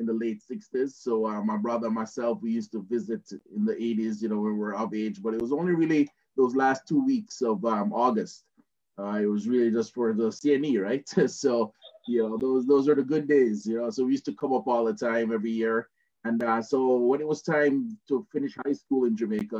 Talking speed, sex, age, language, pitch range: 245 wpm, male, 20-39, English, 110-150 Hz